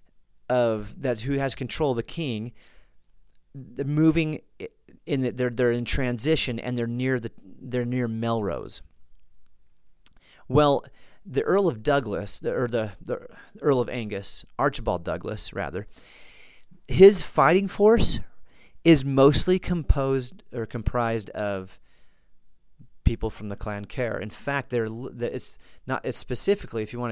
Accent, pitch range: American, 105-135 Hz